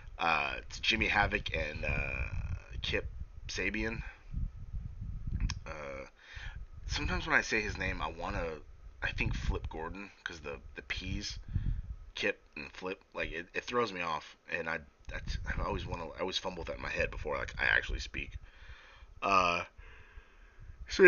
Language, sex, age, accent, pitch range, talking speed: English, male, 30-49, American, 80-100 Hz, 150 wpm